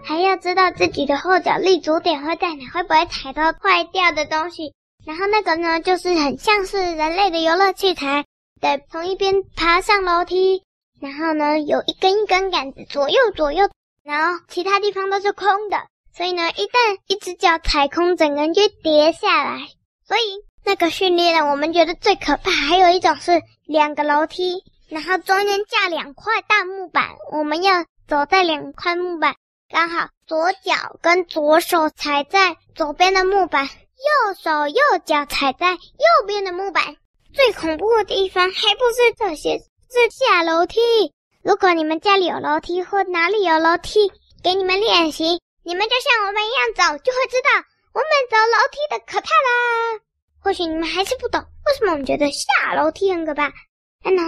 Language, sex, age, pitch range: Chinese, male, 10-29, 320-395 Hz